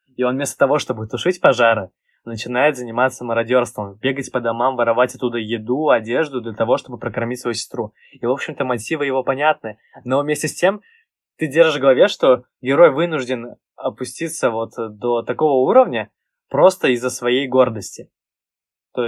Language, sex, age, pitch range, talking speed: Russian, male, 20-39, 120-170 Hz, 155 wpm